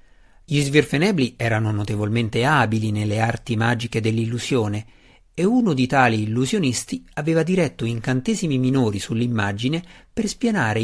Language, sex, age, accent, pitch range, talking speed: Italian, male, 50-69, native, 105-145 Hz, 115 wpm